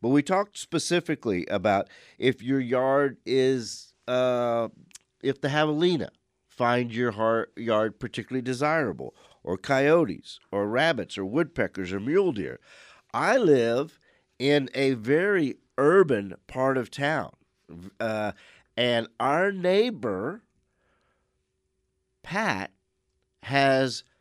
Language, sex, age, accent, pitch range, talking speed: English, male, 50-69, American, 110-145 Hz, 105 wpm